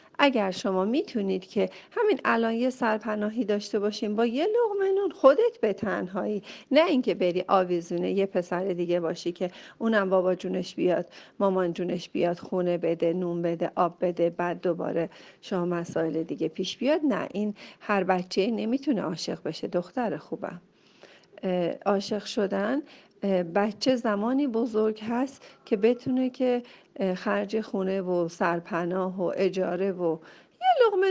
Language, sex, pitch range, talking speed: Persian, female, 185-245 Hz, 140 wpm